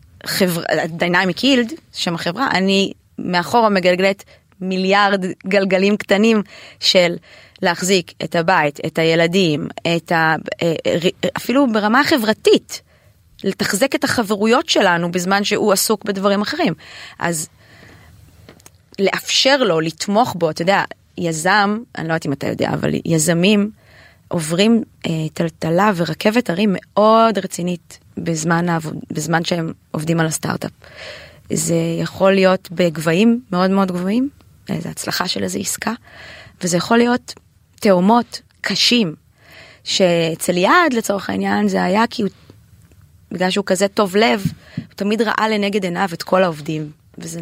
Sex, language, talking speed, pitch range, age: female, Hebrew, 125 wpm, 170-215 Hz, 20-39